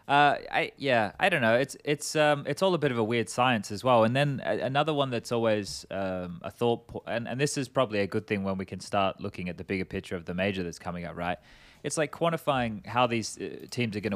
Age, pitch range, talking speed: 20-39, 95-115 Hz, 260 wpm